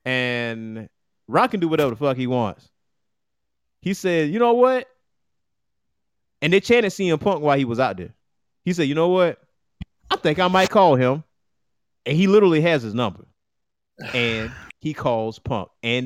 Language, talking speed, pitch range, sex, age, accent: English, 170 wpm, 120-175 Hz, male, 30-49, American